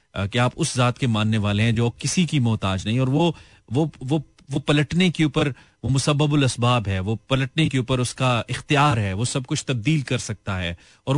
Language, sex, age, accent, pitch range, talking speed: Hindi, male, 30-49, native, 120-150 Hz, 215 wpm